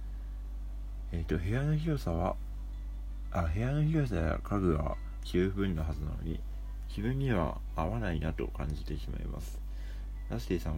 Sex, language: male, Japanese